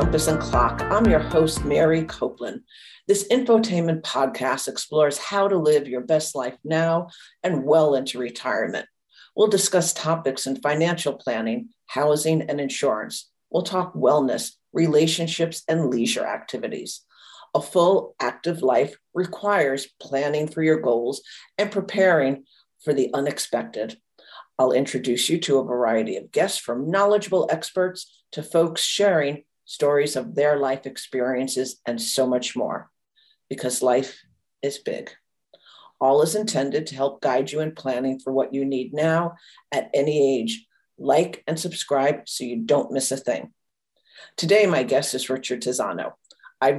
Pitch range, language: 130-165 Hz, English